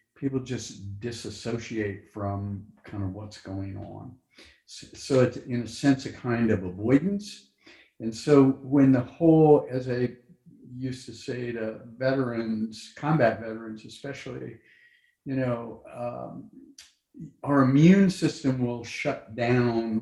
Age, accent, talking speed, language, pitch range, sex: 50-69, American, 130 wpm, English, 110-135 Hz, male